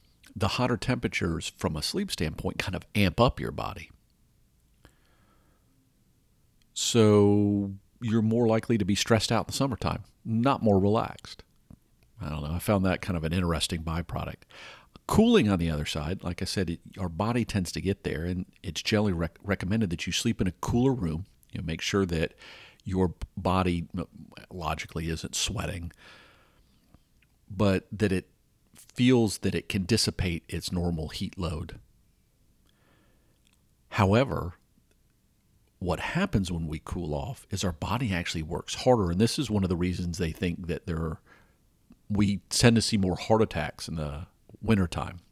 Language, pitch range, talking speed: English, 85-110 Hz, 160 wpm